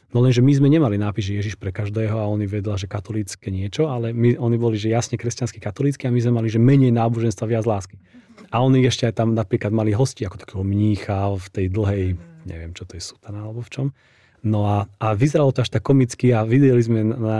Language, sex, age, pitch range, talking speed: Slovak, male, 30-49, 105-135 Hz, 235 wpm